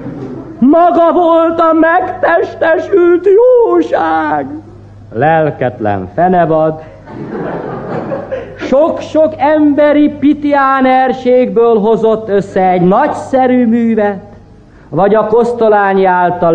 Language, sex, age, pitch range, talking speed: Hungarian, male, 50-69, 150-255 Hz, 70 wpm